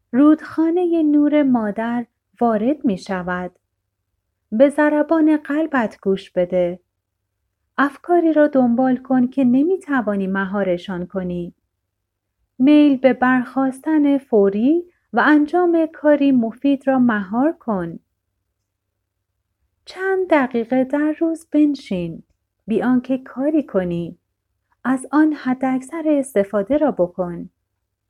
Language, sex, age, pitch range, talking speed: Persian, female, 30-49, 185-300 Hz, 100 wpm